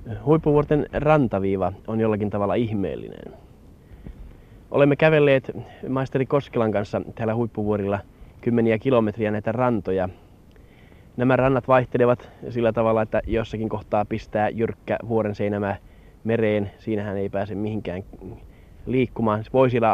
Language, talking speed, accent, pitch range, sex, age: Finnish, 110 wpm, native, 100-120 Hz, male, 30-49